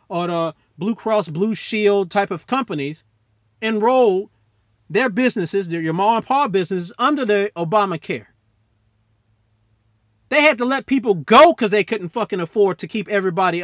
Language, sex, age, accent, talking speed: English, male, 40-59, American, 150 wpm